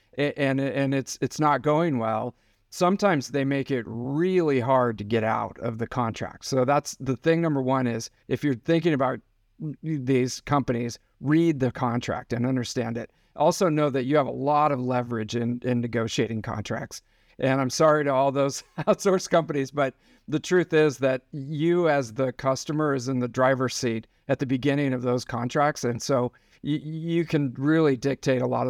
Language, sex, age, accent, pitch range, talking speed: English, male, 50-69, American, 125-150 Hz, 185 wpm